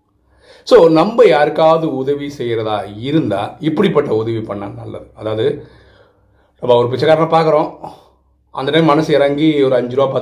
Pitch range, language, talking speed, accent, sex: 120-160 Hz, Tamil, 130 wpm, native, male